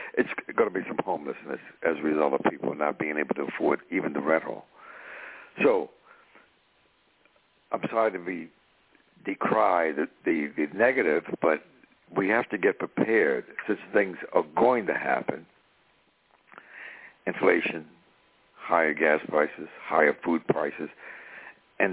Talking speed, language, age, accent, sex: 130 wpm, English, 60-79, American, male